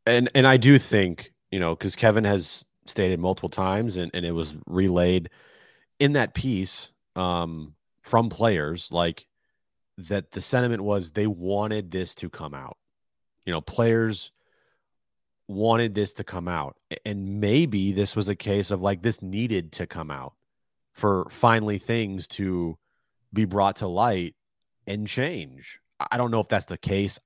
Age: 30-49